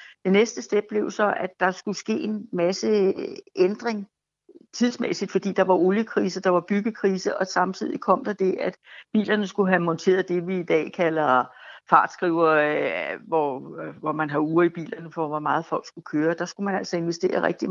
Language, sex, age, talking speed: Danish, female, 60-79, 185 wpm